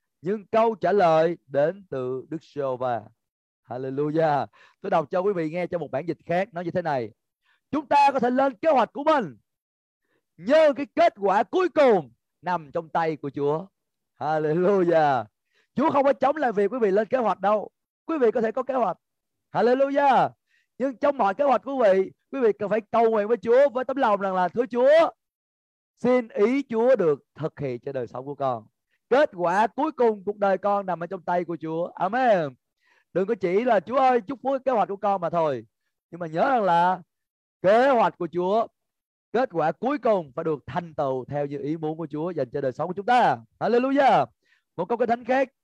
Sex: male